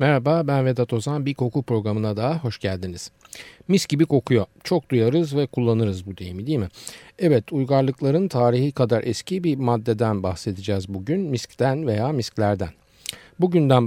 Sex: male